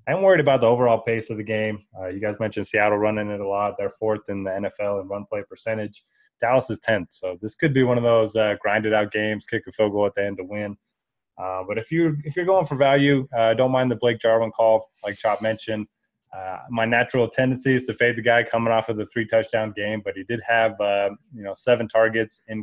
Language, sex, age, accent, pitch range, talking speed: English, male, 20-39, American, 105-120 Hz, 245 wpm